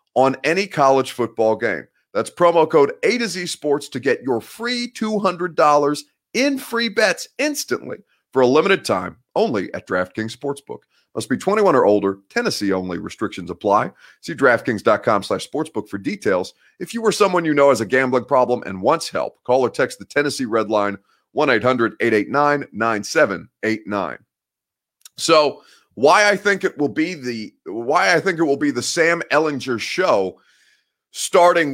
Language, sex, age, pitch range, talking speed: English, male, 30-49, 125-185 Hz, 155 wpm